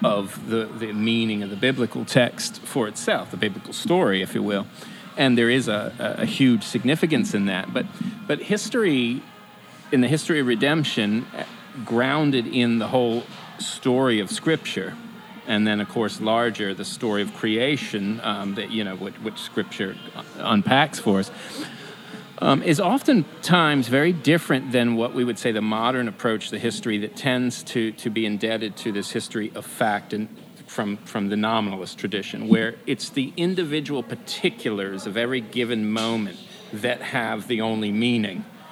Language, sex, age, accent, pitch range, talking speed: English, male, 40-59, American, 110-135 Hz, 165 wpm